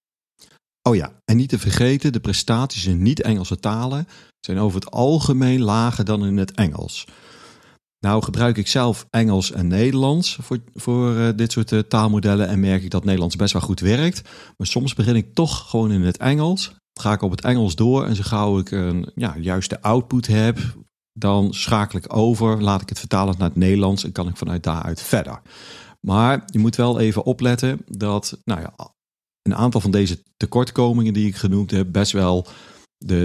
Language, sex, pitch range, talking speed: Dutch, male, 95-120 Hz, 190 wpm